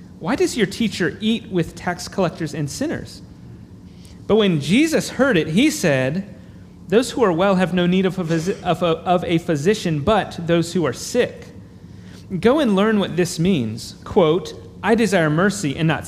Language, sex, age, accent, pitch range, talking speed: English, male, 30-49, American, 150-200 Hz, 180 wpm